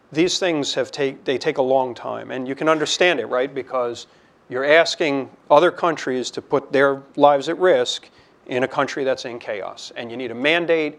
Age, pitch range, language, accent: 40-59, 125-155 Hz, English, American